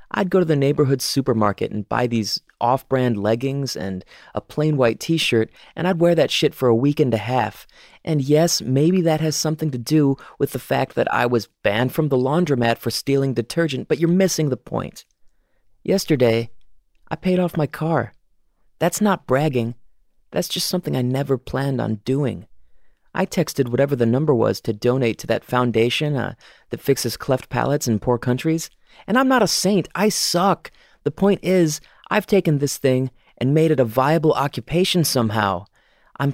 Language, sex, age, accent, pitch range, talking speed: English, male, 30-49, American, 120-165 Hz, 185 wpm